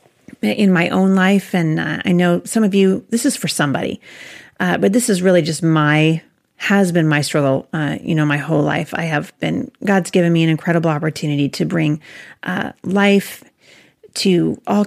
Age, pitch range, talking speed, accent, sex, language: 40-59, 165-205 Hz, 190 wpm, American, female, English